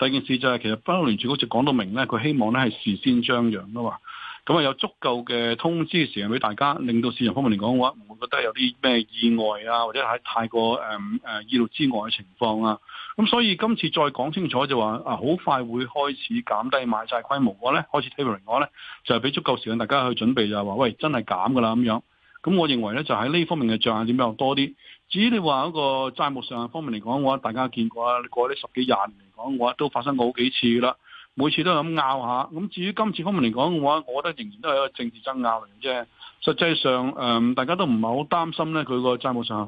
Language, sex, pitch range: Chinese, male, 115-150 Hz